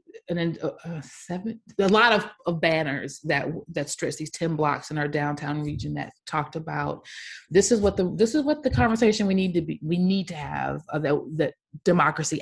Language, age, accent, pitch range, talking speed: English, 30-49, American, 150-175 Hz, 215 wpm